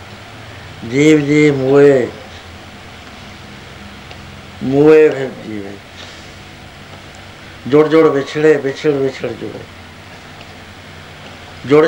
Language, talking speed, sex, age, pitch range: Punjabi, 60 wpm, male, 60-79, 95-145 Hz